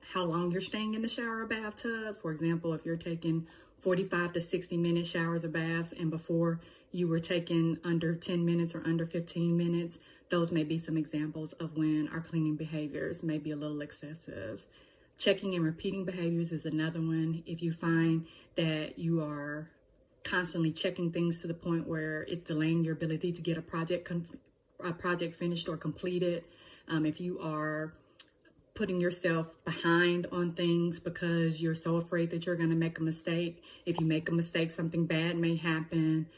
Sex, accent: female, American